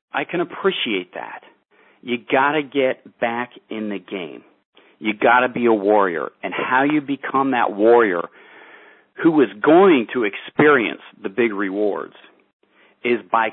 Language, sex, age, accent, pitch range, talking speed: English, male, 50-69, American, 115-140 Hz, 150 wpm